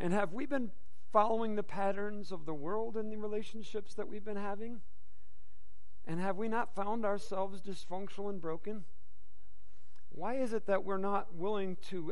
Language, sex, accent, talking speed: English, male, American, 170 wpm